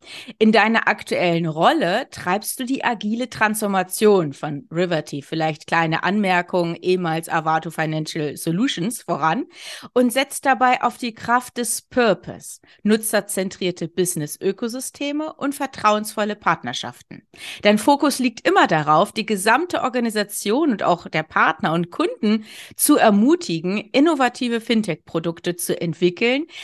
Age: 30-49